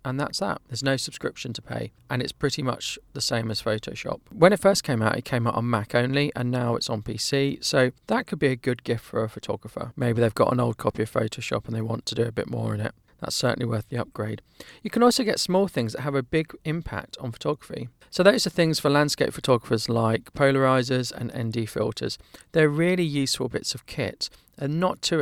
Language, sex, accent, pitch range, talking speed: English, male, British, 115-145 Hz, 235 wpm